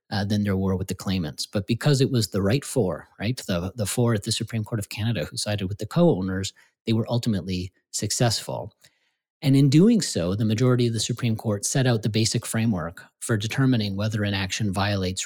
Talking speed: 210 wpm